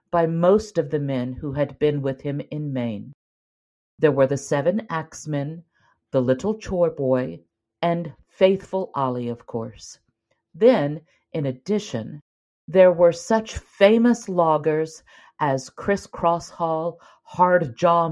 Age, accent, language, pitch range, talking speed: 50-69, American, English, 130-185 Hz, 130 wpm